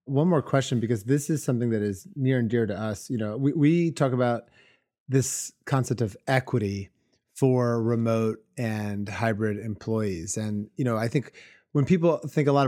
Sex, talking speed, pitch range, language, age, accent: male, 185 wpm, 115-140 Hz, English, 30-49, American